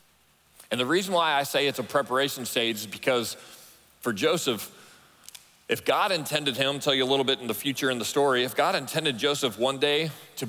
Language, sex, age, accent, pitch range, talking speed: English, male, 40-59, American, 125-160 Hz, 205 wpm